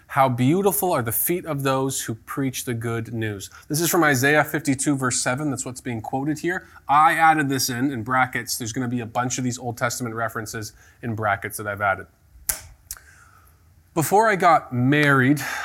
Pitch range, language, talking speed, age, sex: 110-150 Hz, English, 190 wpm, 20-39, male